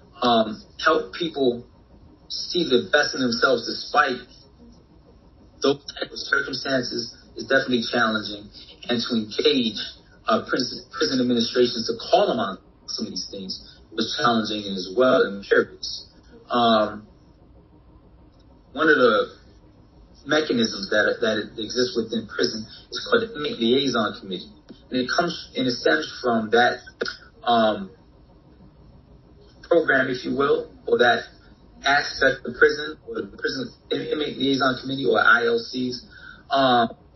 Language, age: English, 30-49